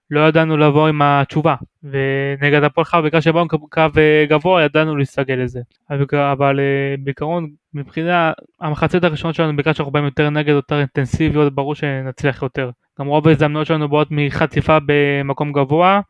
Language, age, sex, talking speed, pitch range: Hebrew, 20-39, male, 145 wpm, 140-155 Hz